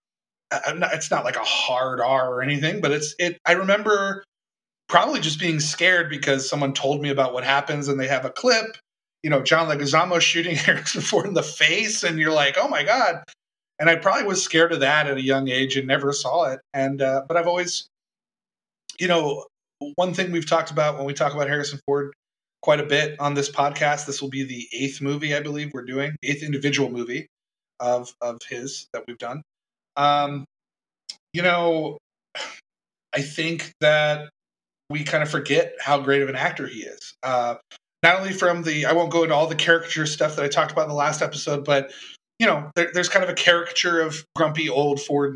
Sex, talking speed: male, 205 wpm